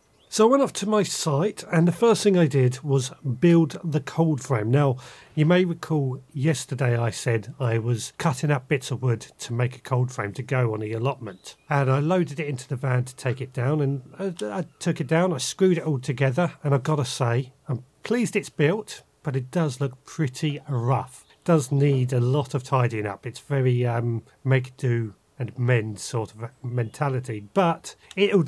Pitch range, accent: 125-155 Hz, British